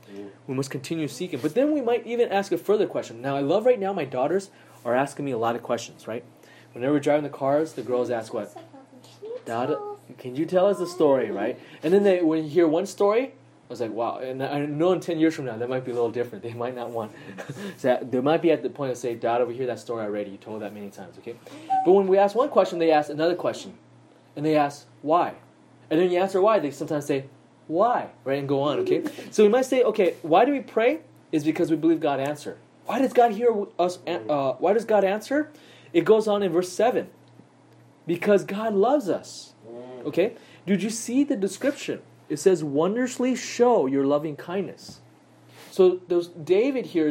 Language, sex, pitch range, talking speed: English, male, 140-210 Hz, 225 wpm